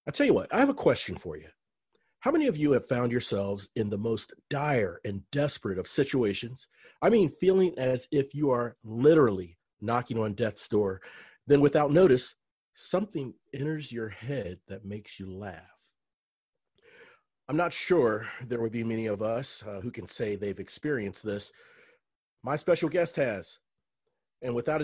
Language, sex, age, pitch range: English, male, 40-59, 105-155 Hz